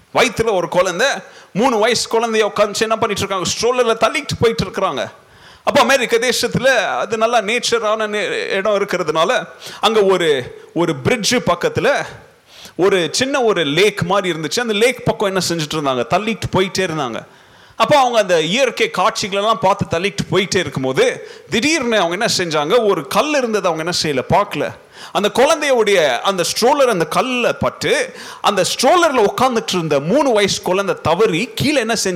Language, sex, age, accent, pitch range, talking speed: Tamil, male, 30-49, native, 185-265 Hz, 120 wpm